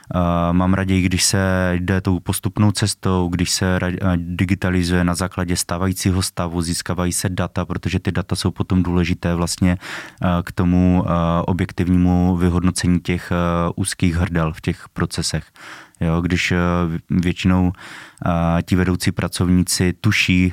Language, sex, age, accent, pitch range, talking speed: Czech, male, 20-39, native, 85-95 Hz, 120 wpm